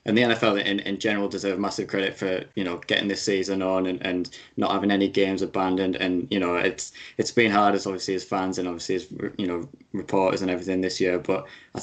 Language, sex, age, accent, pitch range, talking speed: English, male, 20-39, British, 95-110 Hz, 235 wpm